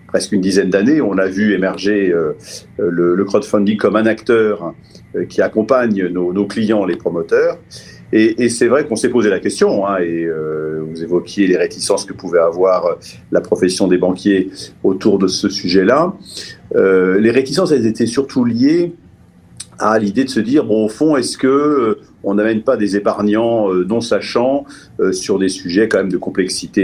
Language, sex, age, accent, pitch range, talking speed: French, male, 50-69, French, 90-115 Hz, 170 wpm